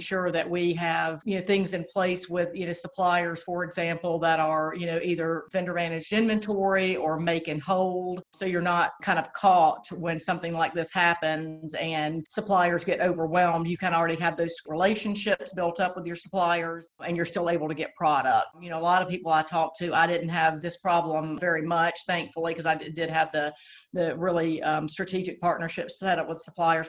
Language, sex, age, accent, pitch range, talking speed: English, female, 40-59, American, 160-180 Hz, 205 wpm